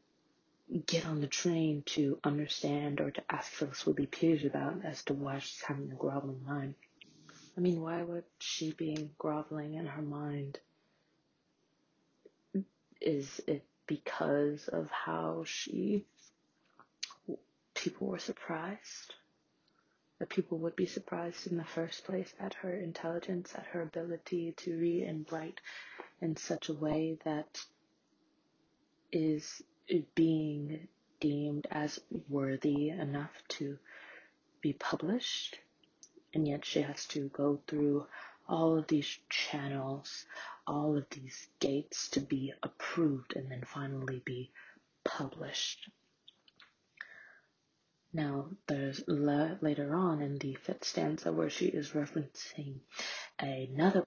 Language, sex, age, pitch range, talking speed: English, female, 20-39, 145-170 Hz, 125 wpm